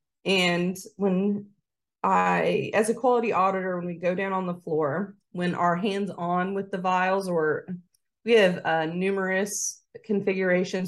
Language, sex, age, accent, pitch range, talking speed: English, female, 30-49, American, 165-195 Hz, 150 wpm